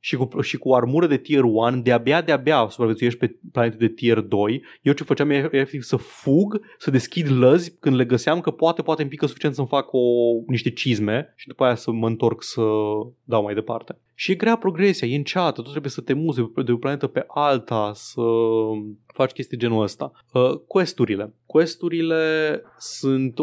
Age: 20-39